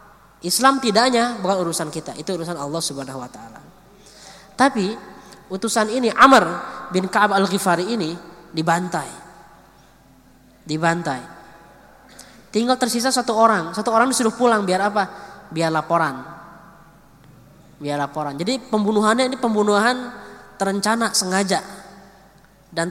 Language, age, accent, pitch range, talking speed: Indonesian, 20-39, native, 175-240 Hz, 115 wpm